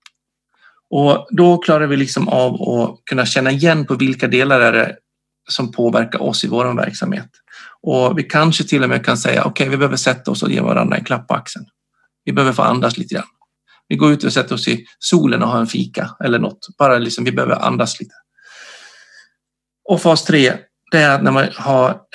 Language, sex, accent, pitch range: Swedish, male, native, 125-175 Hz